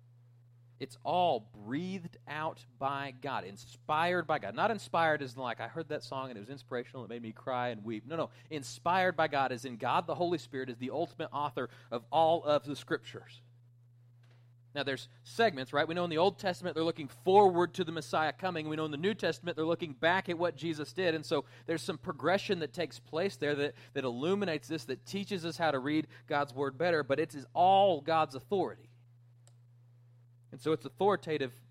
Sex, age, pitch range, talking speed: male, 30-49, 120-150 Hz, 205 wpm